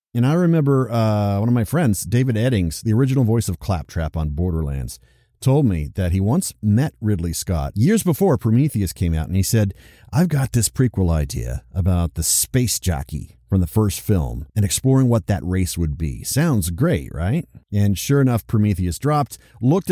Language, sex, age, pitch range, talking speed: English, male, 40-59, 100-135 Hz, 185 wpm